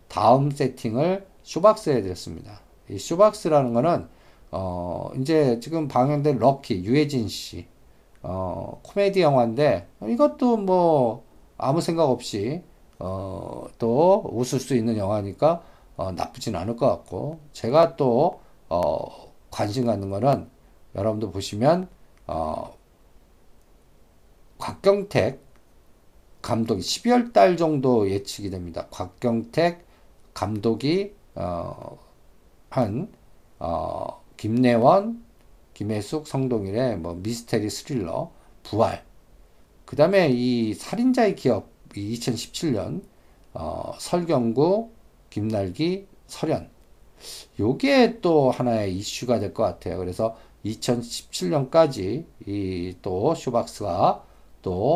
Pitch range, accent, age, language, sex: 105-160 Hz, native, 50-69, Korean, male